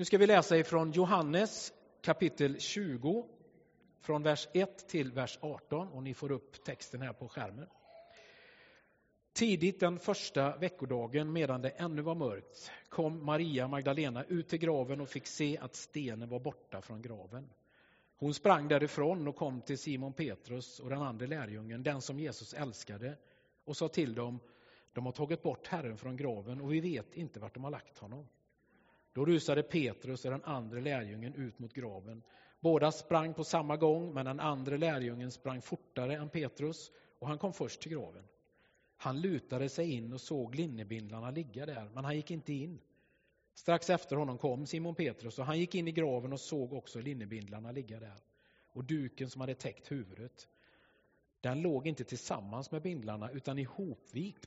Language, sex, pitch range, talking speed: Swedish, male, 125-160 Hz, 175 wpm